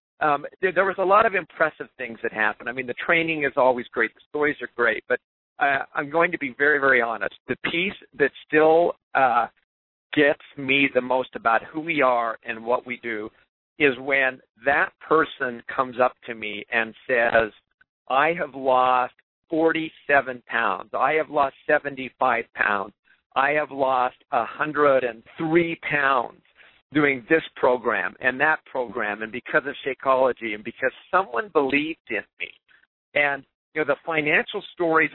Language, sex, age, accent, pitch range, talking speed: English, male, 50-69, American, 125-155 Hz, 160 wpm